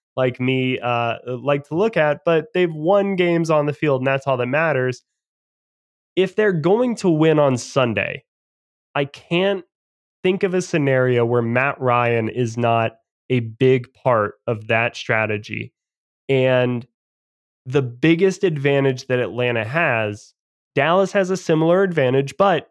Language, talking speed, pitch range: English, 150 wpm, 130-170 Hz